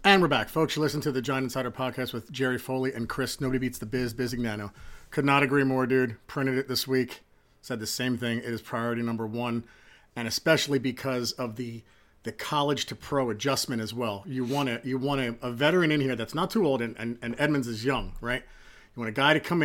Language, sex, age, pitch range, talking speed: English, male, 40-59, 125-160 Hz, 240 wpm